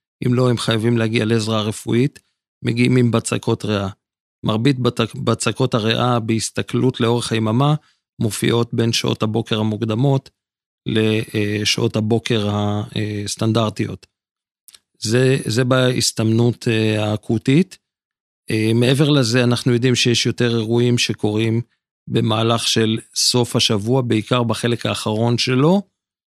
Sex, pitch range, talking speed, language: male, 110-130 Hz, 105 wpm, Hebrew